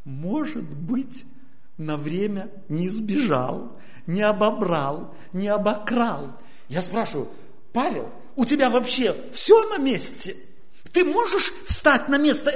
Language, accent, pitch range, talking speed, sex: Russian, native, 185-290 Hz, 115 wpm, male